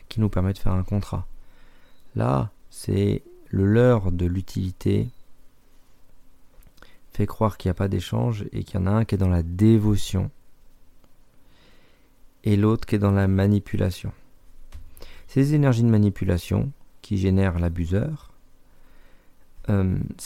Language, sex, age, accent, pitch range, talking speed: French, male, 40-59, French, 90-110 Hz, 135 wpm